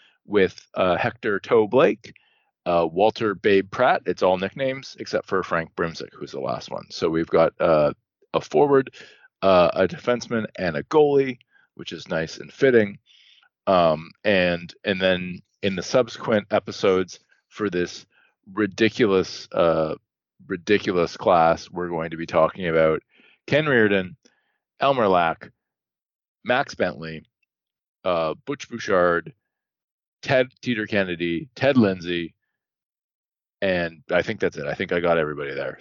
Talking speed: 135 wpm